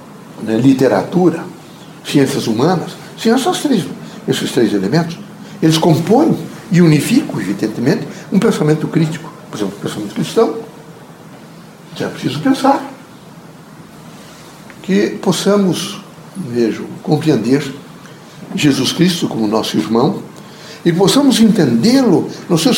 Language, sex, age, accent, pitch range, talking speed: Portuguese, male, 60-79, Brazilian, 155-205 Hz, 95 wpm